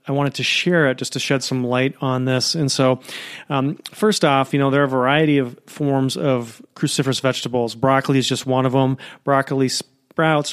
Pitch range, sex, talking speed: 130-145 Hz, male, 205 wpm